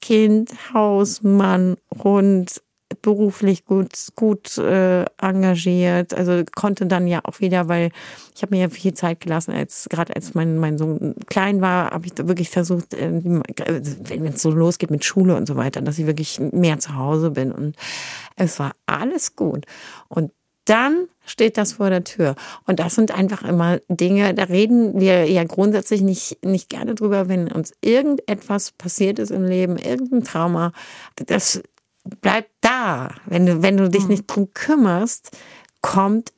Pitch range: 170-205 Hz